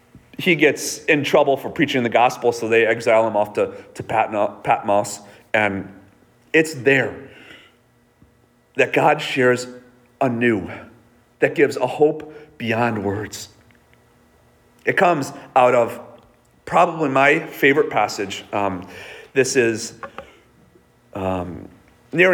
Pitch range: 110-145 Hz